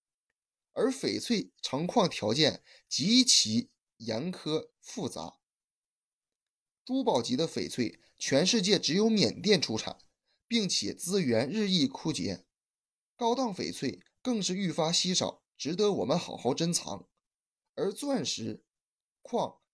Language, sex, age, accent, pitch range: Chinese, male, 20-39, native, 155-230 Hz